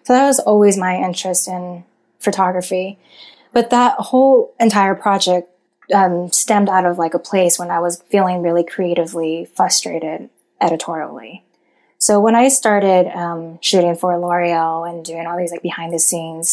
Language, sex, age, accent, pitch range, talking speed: English, female, 20-39, American, 175-205 Hz, 160 wpm